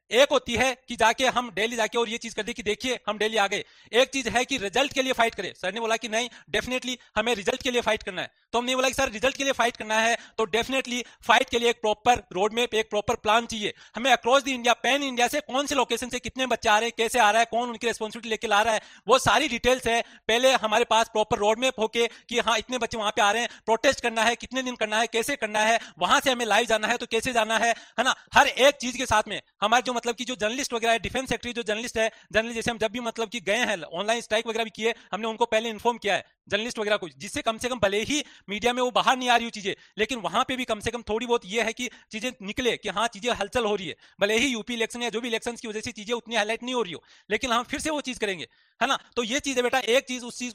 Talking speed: 275 wpm